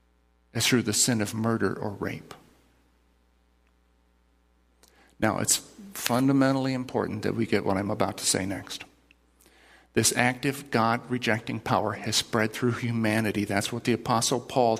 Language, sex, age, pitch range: English, male, 50-69, 110-150 Hz